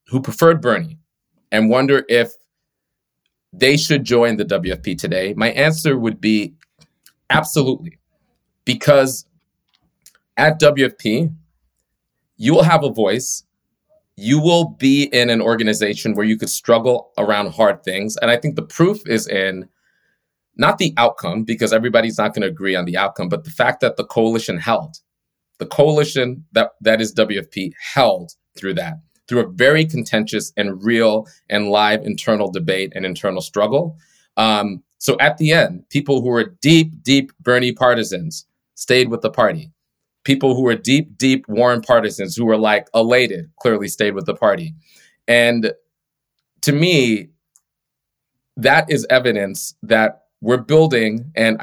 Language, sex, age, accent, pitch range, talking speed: English, male, 30-49, American, 110-145 Hz, 150 wpm